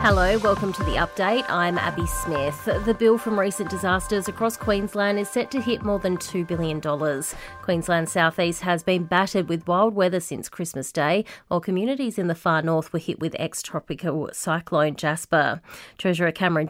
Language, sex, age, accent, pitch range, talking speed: English, female, 30-49, Australian, 160-195 Hz, 175 wpm